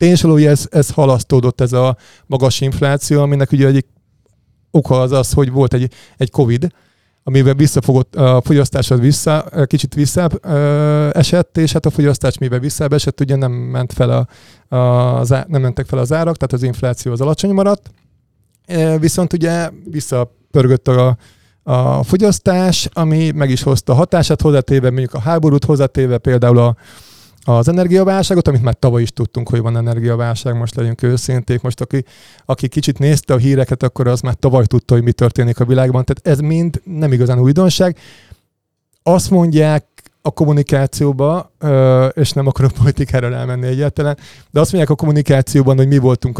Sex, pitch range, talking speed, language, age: male, 125-150 Hz, 160 wpm, Hungarian, 30-49